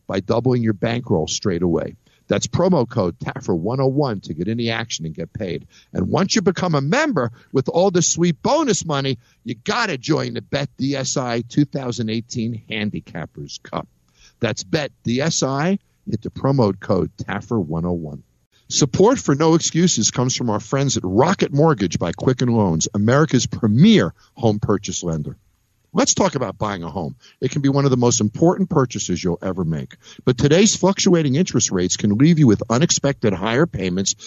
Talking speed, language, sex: 165 wpm, English, male